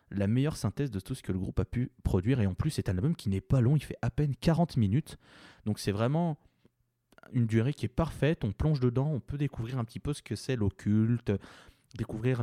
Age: 20-39